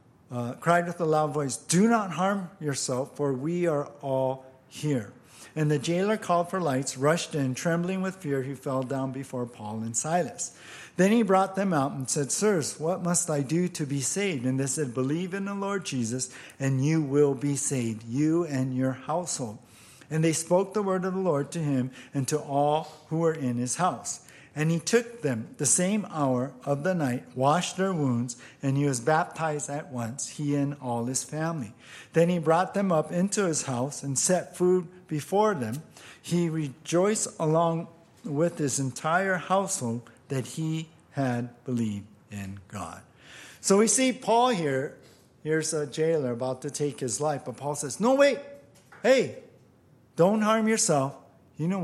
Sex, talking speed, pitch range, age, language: male, 180 wpm, 130-175 Hz, 50-69, English